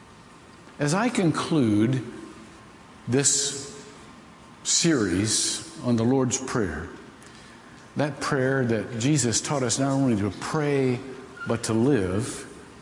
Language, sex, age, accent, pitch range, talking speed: English, male, 60-79, American, 115-150 Hz, 105 wpm